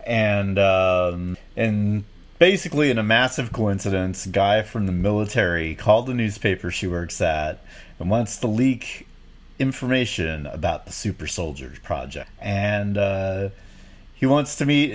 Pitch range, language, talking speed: 90-120 Hz, English, 140 wpm